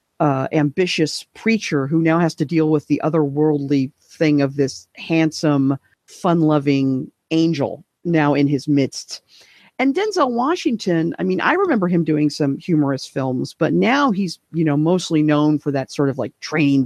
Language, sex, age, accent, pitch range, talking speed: English, female, 40-59, American, 140-180 Hz, 165 wpm